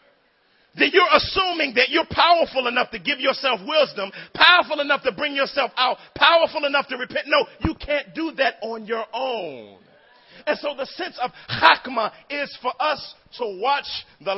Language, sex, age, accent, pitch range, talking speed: English, male, 40-59, American, 230-295 Hz, 170 wpm